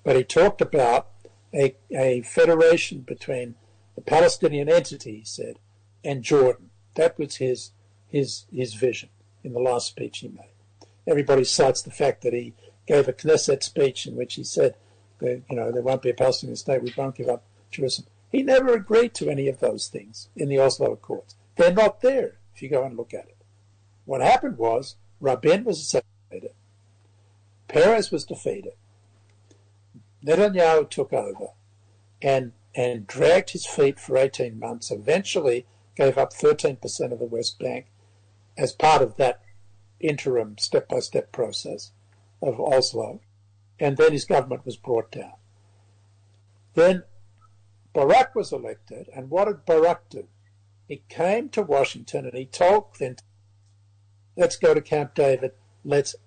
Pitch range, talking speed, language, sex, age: 100-140 Hz, 155 wpm, English, male, 60-79